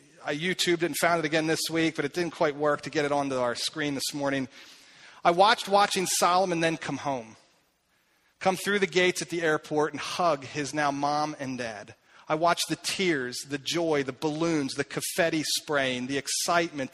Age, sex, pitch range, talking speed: 40-59, male, 145-180 Hz, 195 wpm